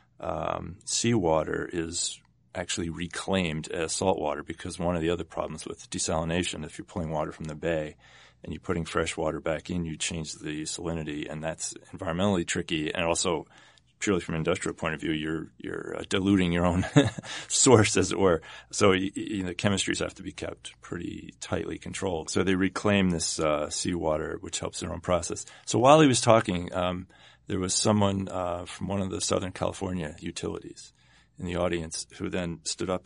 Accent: American